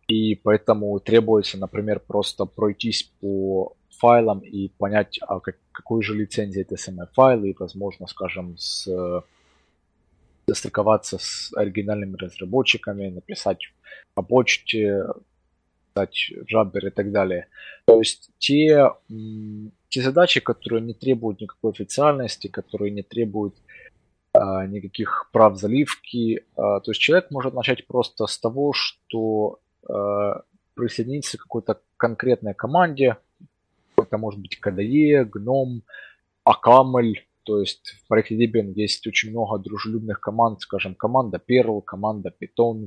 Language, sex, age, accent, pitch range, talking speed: Russian, male, 20-39, native, 100-115 Hz, 120 wpm